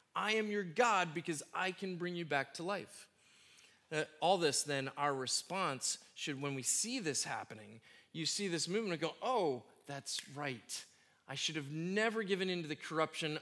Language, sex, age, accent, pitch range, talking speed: English, male, 20-39, American, 145-200 Hz, 190 wpm